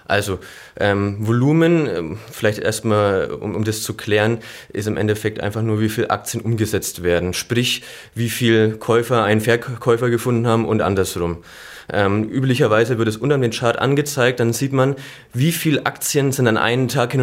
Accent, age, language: German, 20-39, German